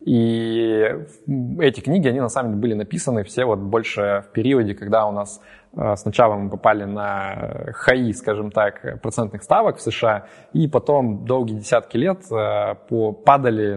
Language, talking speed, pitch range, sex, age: Russian, 145 wpm, 105-120 Hz, male, 20-39